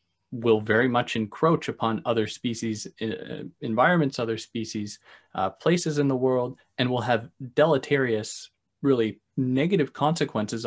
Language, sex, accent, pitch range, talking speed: English, male, American, 110-135 Hz, 130 wpm